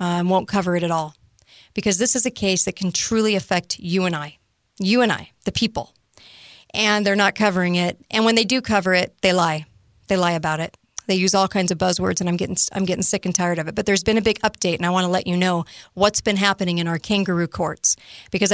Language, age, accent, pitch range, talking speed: English, 40-59, American, 180-220 Hz, 250 wpm